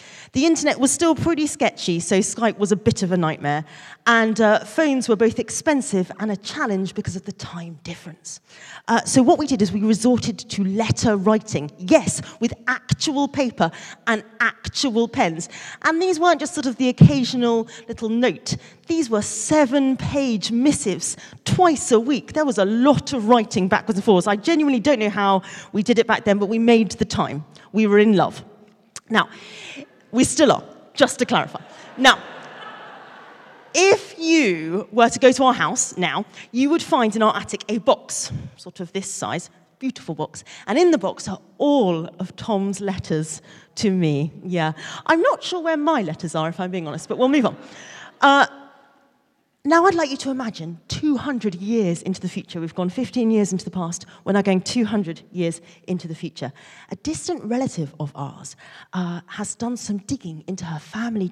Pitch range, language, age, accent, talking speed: 180-260 Hz, English, 30-49, British, 185 wpm